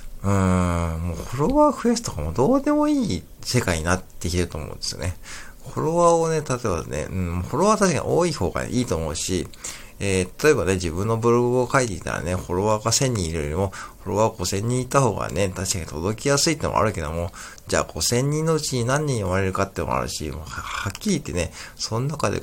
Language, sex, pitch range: Japanese, male, 90-135 Hz